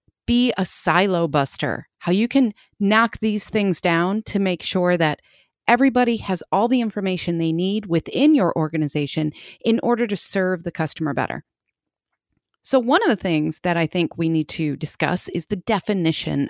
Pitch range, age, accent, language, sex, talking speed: 160-220 Hz, 30-49, American, English, female, 170 wpm